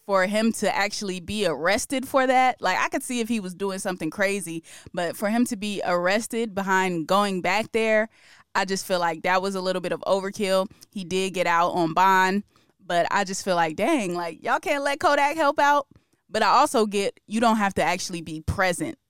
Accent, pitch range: American, 180-225 Hz